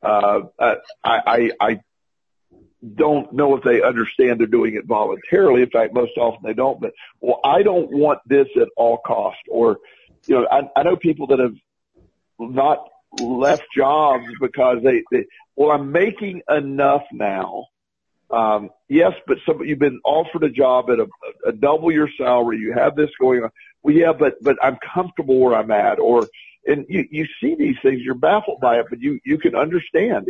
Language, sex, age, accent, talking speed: English, male, 50-69, American, 185 wpm